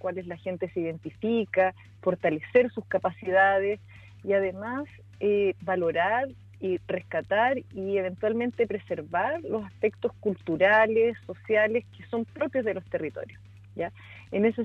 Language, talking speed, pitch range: Spanish, 125 wpm, 165-225 Hz